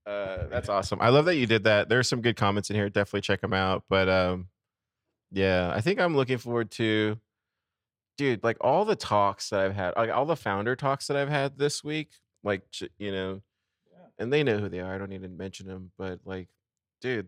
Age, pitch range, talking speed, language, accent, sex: 20-39, 90-110 Hz, 225 wpm, English, American, male